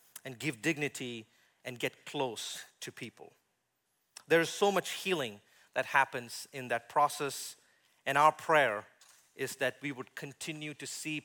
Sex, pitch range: male, 125-155 Hz